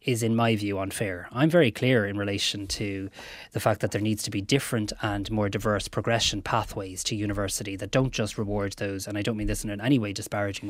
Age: 20-39